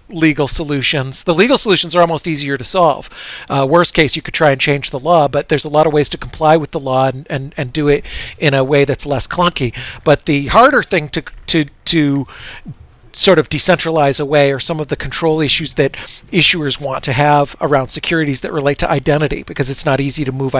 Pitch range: 135-160 Hz